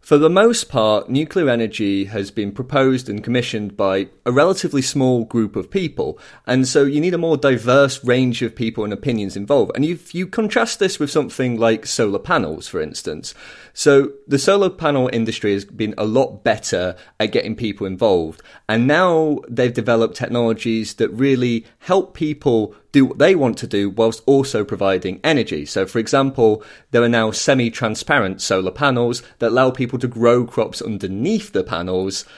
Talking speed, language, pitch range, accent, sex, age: 175 wpm, English, 110-145 Hz, British, male, 30-49